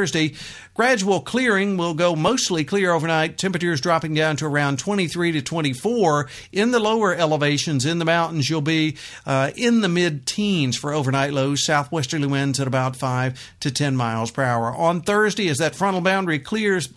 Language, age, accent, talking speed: English, 50-69, American, 175 wpm